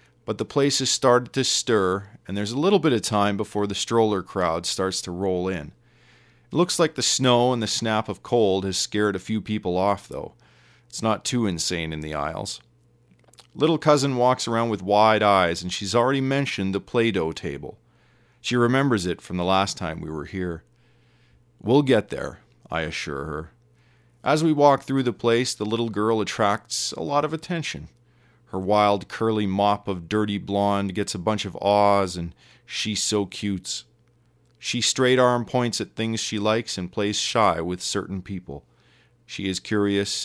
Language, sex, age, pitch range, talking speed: English, male, 40-59, 95-120 Hz, 180 wpm